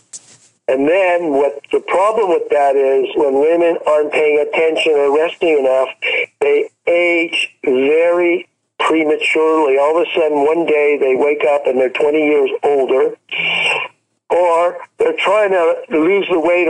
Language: English